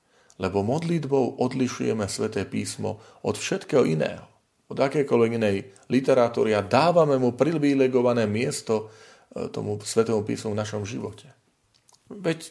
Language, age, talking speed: Slovak, 40-59, 115 wpm